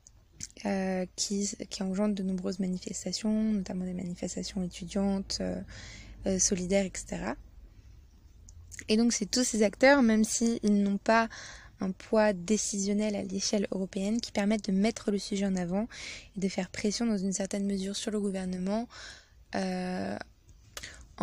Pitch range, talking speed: 190-215 Hz, 140 wpm